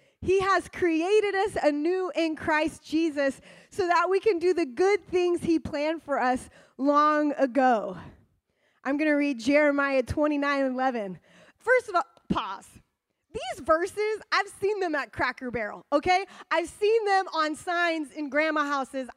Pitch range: 285-375 Hz